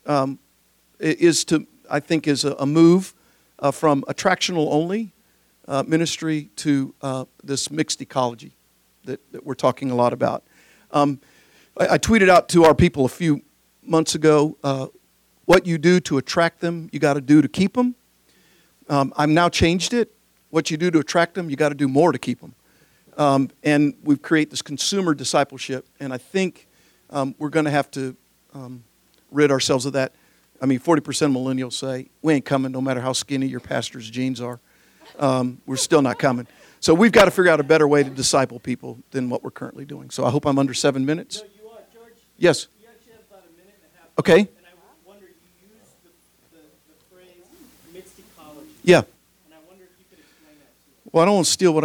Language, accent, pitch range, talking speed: English, American, 135-175 Hz, 170 wpm